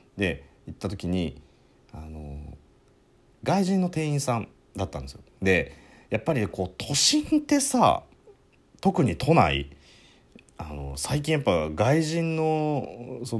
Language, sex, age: Japanese, male, 40-59